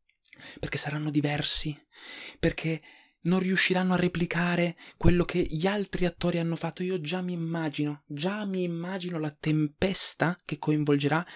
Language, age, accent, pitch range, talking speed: Italian, 20-39, native, 135-170 Hz, 135 wpm